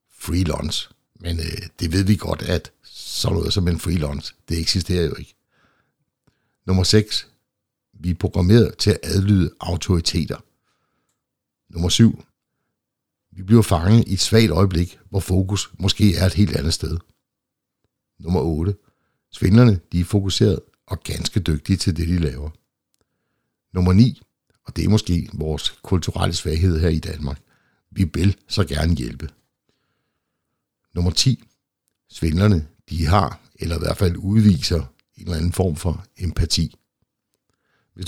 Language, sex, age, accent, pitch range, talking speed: Danish, male, 60-79, native, 85-105 Hz, 140 wpm